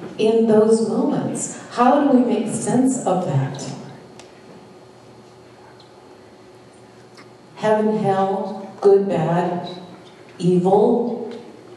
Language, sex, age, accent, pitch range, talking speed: English, female, 50-69, American, 180-235 Hz, 75 wpm